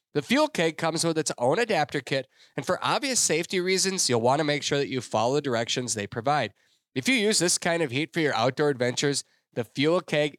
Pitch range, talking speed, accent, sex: 140-205 Hz, 230 wpm, American, male